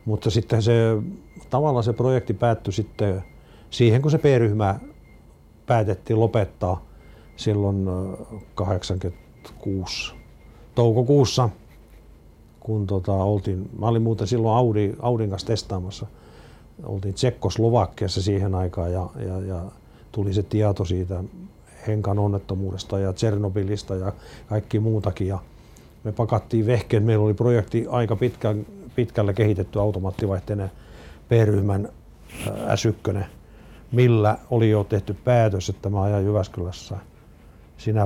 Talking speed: 105 wpm